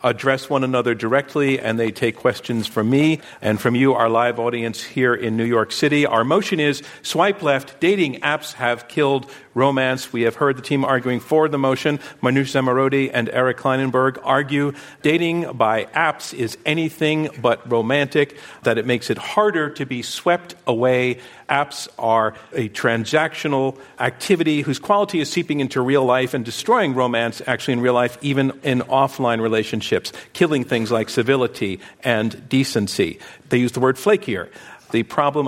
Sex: male